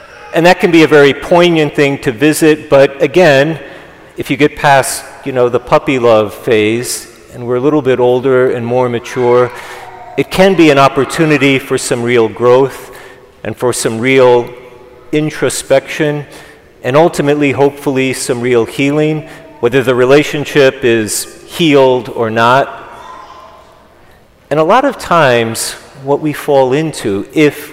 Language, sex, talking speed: English, male, 145 wpm